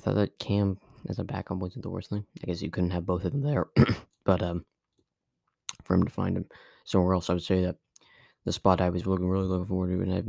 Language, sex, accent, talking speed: English, male, American, 260 wpm